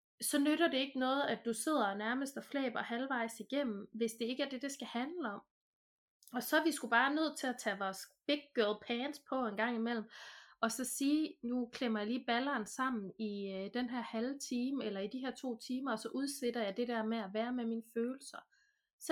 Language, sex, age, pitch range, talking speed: Danish, female, 30-49, 215-270 Hz, 235 wpm